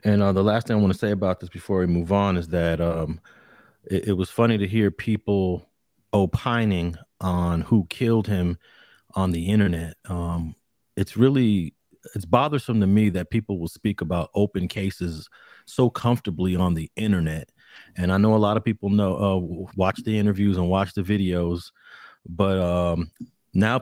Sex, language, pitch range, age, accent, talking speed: male, English, 95-110 Hz, 30-49, American, 180 wpm